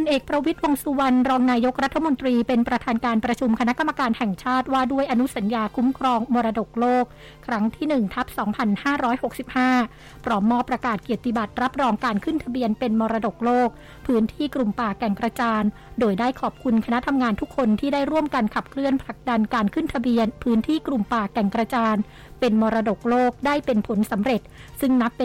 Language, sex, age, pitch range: Thai, female, 60-79, 225-260 Hz